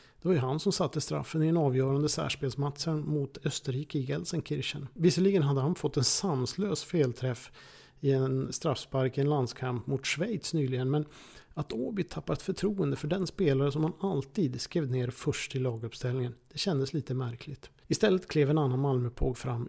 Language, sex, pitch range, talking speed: Swedish, male, 130-165 Hz, 170 wpm